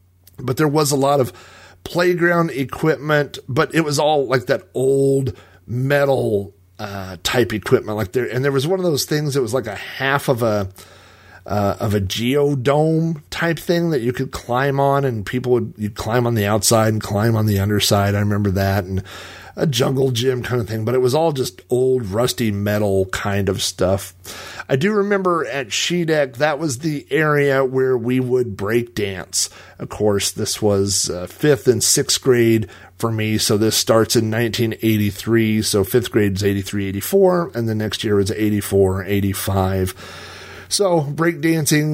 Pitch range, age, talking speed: 100-135 Hz, 40-59, 180 wpm